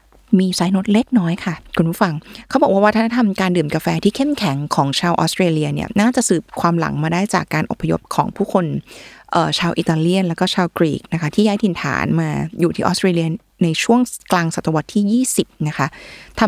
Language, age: Thai, 20-39